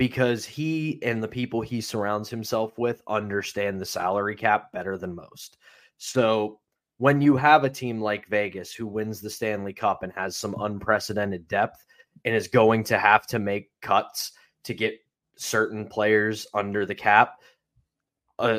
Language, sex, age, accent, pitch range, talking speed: English, male, 20-39, American, 100-120 Hz, 160 wpm